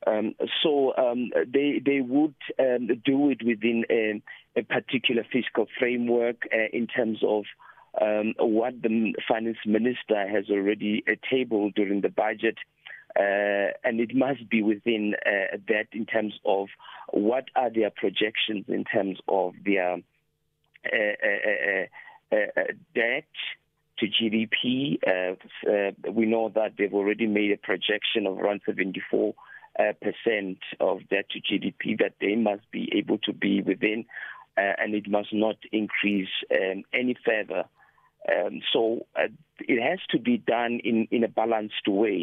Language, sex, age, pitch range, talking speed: English, male, 50-69, 105-120 Hz, 150 wpm